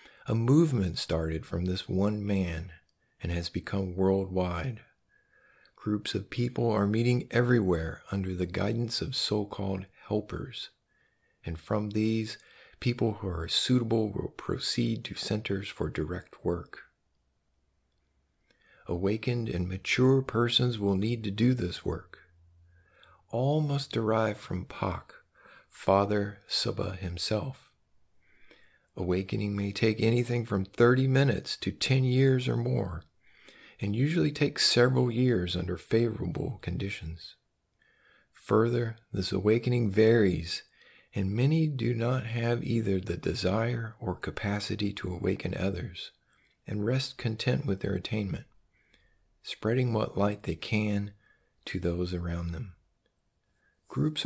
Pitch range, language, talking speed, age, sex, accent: 90-120 Hz, English, 120 wpm, 50-69, male, American